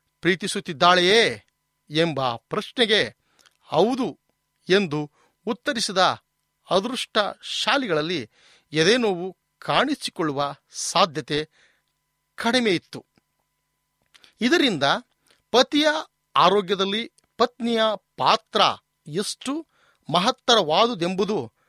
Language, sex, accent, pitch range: Kannada, male, native, 160-235 Hz